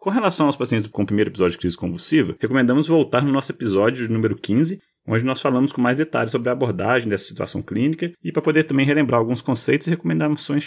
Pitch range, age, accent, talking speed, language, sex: 115-155 Hz, 30-49, Brazilian, 220 wpm, Portuguese, male